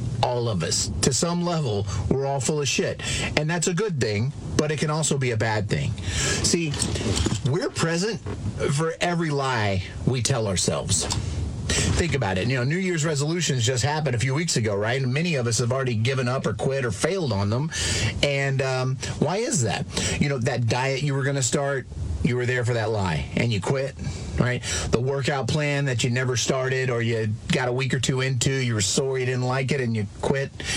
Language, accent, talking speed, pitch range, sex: English, American, 215 wpm, 120-150 Hz, male